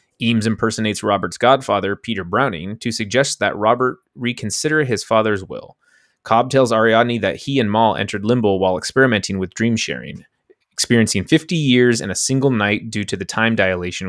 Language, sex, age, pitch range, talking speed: English, male, 20-39, 100-120 Hz, 170 wpm